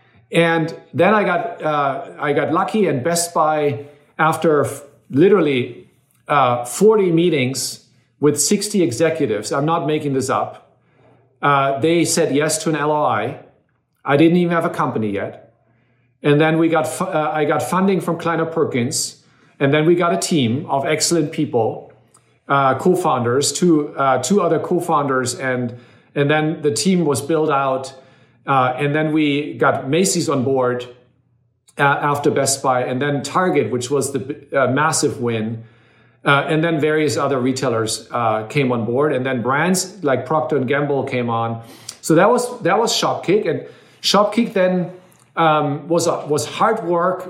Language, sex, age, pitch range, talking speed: English, male, 50-69, 135-165 Hz, 165 wpm